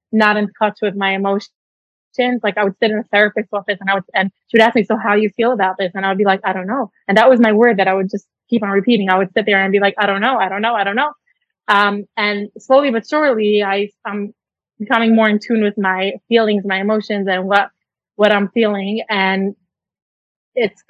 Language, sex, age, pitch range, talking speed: English, female, 20-39, 200-225 Hz, 255 wpm